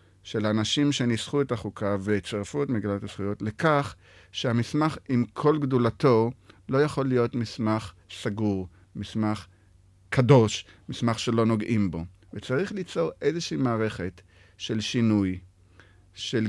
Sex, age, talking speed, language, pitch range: male, 50-69, 115 wpm, Hebrew, 95-120 Hz